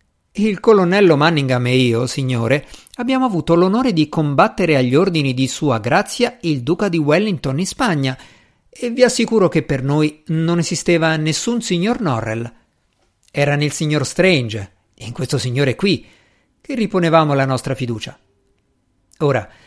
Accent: native